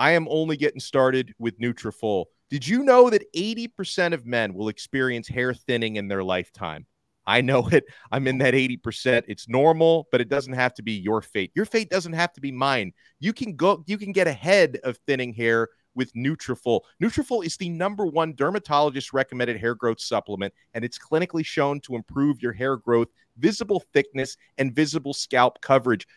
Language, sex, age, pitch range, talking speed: English, male, 30-49, 115-160 Hz, 190 wpm